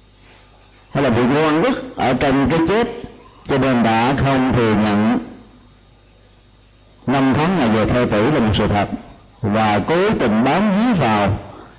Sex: male